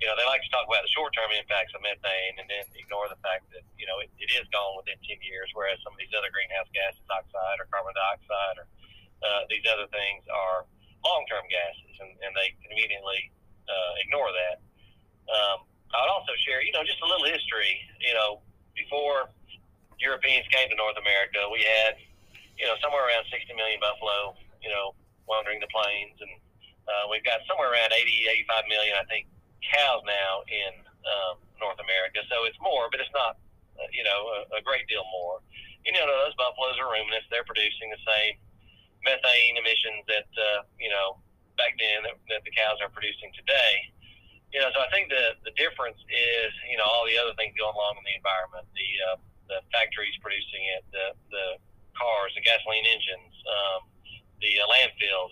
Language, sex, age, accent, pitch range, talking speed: English, male, 40-59, American, 95-110 Hz, 195 wpm